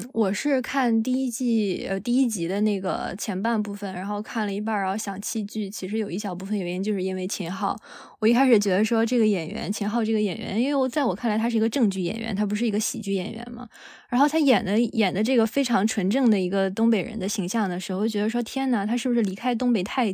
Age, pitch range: 20-39, 195-235 Hz